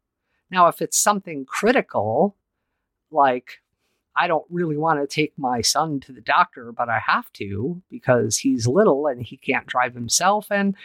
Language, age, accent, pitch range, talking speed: English, 50-69, American, 125-185 Hz, 165 wpm